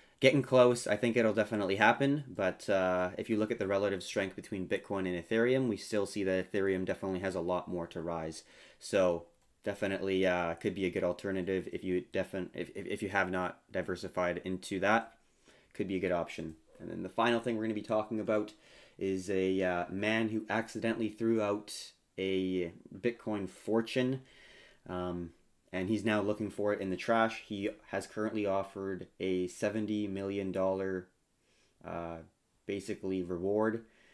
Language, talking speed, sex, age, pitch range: English, 170 wpm, male, 20-39, 90-110 Hz